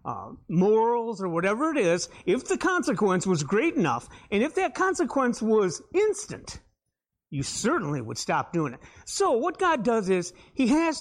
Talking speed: 170 wpm